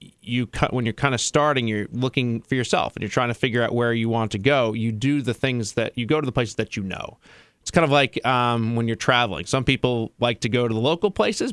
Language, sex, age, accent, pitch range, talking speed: English, male, 30-49, American, 115-140 Hz, 270 wpm